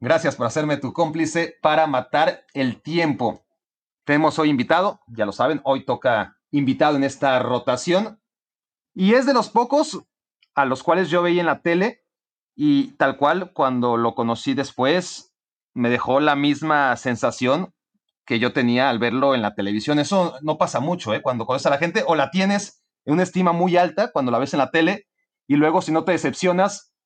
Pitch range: 130-175 Hz